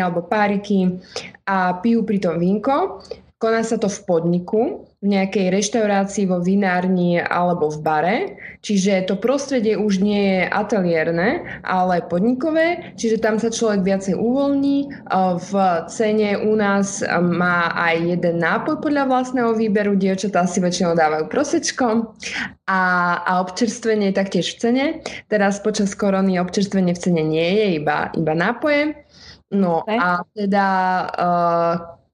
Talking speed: 135 wpm